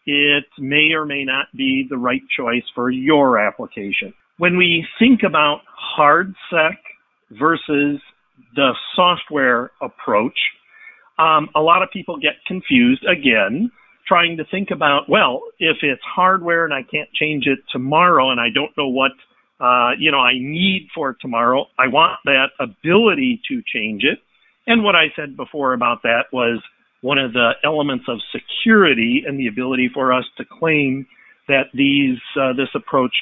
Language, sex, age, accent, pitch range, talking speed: English, male, 50-69, American, 135-190 Hz, 160 wpm